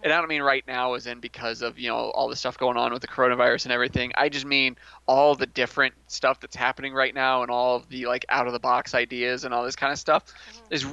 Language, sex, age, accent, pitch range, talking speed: English, male, 20-39, American, 120-150 Hz, 275 wpm